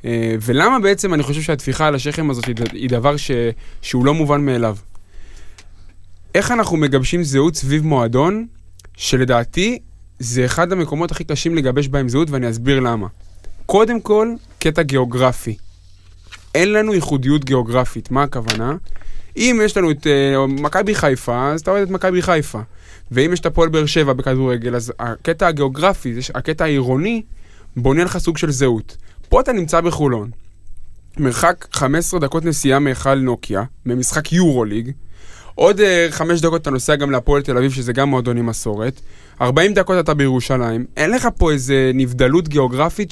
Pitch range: 120-165 Hz